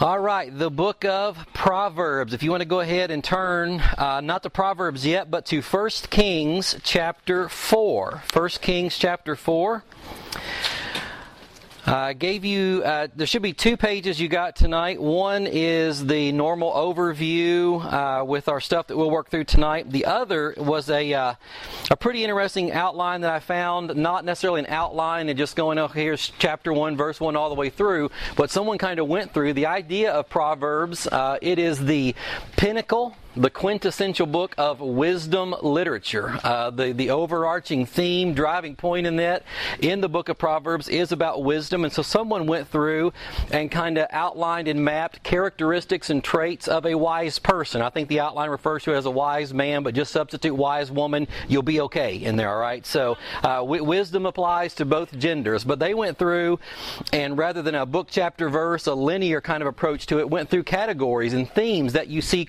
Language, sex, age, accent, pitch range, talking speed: English, male, 40-59, American, 150-180 Hz, 190 wpm